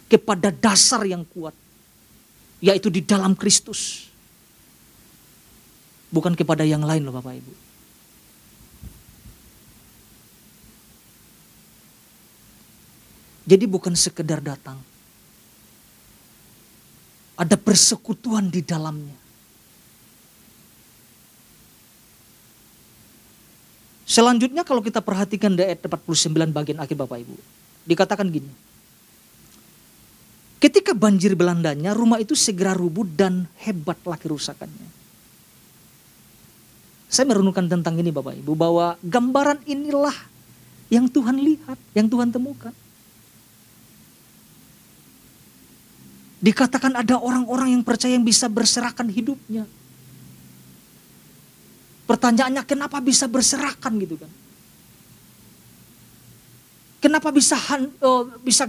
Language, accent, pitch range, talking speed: Indonesian, native, 165-250 Hz, 80 wpm